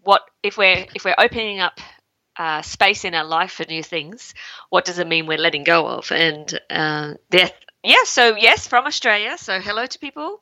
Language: English